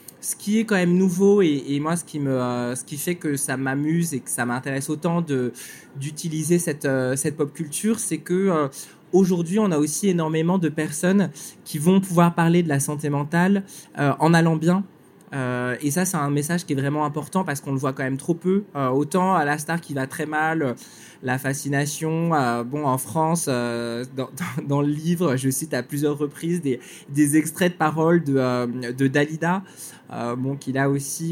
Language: French